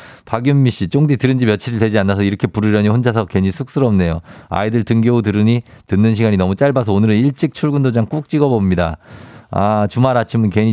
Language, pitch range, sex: Korean, 105-155 Hz, male